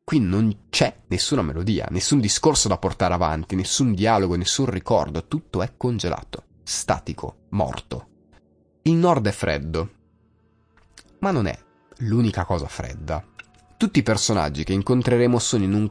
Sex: male